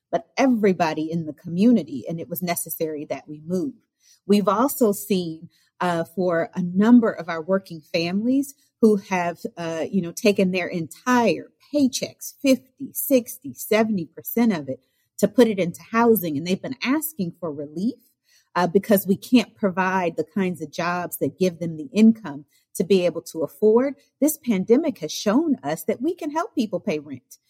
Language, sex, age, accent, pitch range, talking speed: English, female, 40-59, American, 170-225 Hz, 170 wpm